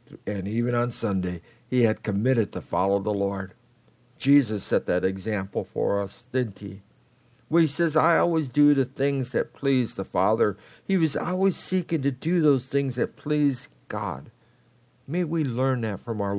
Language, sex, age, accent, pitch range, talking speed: English, male, 60-79, American, 105-145 Hz, 175 wpm